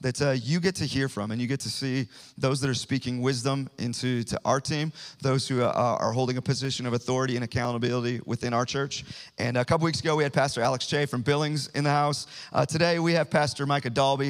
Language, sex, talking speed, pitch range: English, male, 240 wpm, 125-145 Hz